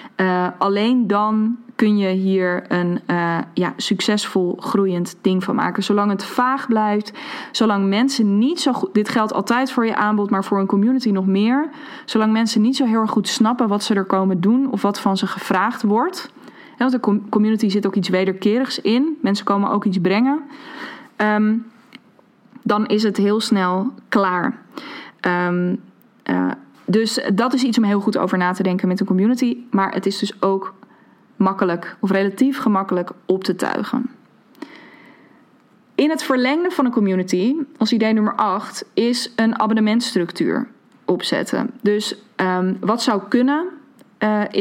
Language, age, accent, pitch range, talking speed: Dutch, 20-39, Dutch, 195-250 Hz, 155 wpm